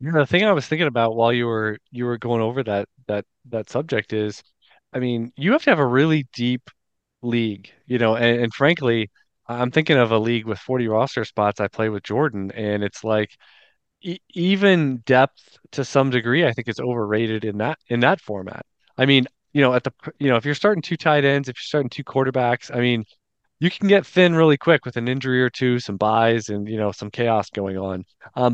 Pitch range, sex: 110-145 Hz, male